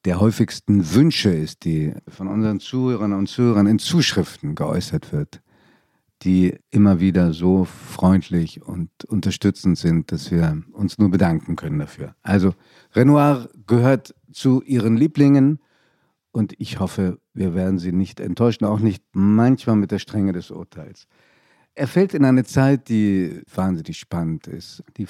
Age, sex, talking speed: 50-69, male, 145 wpm